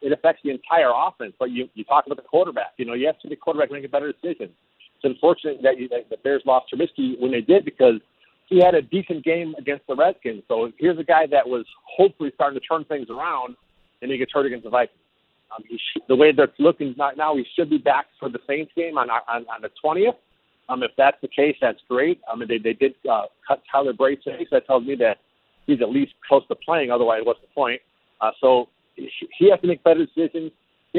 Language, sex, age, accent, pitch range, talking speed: English, male, 40-59, American, 135-180 Hz, 245 wpm